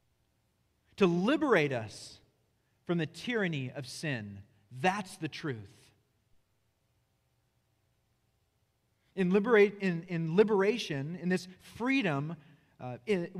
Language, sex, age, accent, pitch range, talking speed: English, male, 40-59, American, 120-195 Hz, 80 wpm